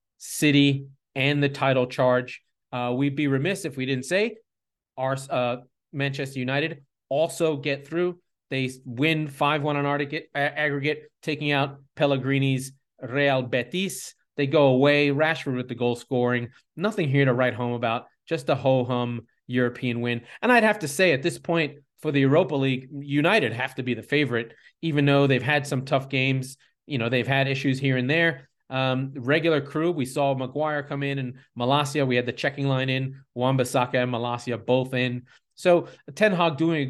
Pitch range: 125-145 Hz